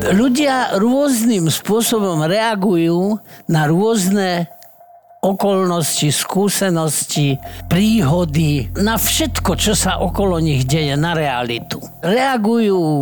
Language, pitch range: Slovak, 145-200 Hz